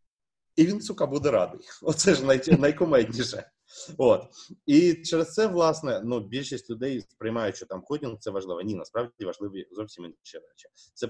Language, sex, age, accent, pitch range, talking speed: Ukrainian, male, 30-49, native, 110-150 Hz, 150 wpm